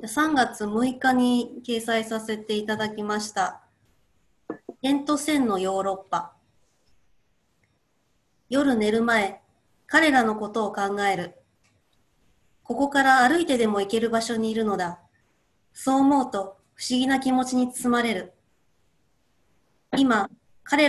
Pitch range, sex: 195-260 Hz, female